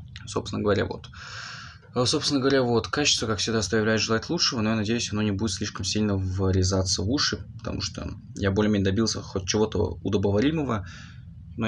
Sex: male